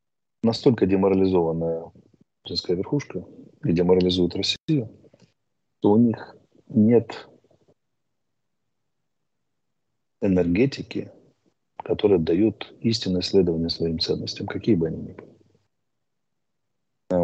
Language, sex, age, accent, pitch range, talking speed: Russian, male, 40-59, native, 90-110 Hz, 80 wpm